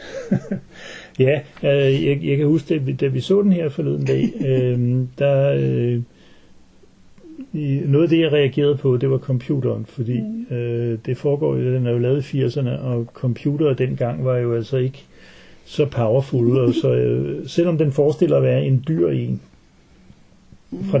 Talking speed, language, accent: 170 wpm, Danish, native